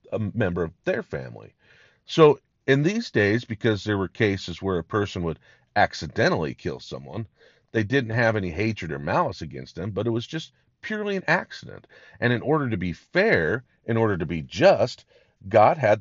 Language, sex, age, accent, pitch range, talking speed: English, male, 40-59, American, 85-115 Hz, 185 wpm